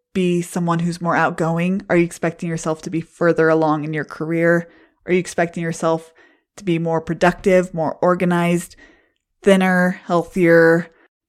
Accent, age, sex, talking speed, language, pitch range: American, 20-39, female, 150 wpm, English, 165-200 Hz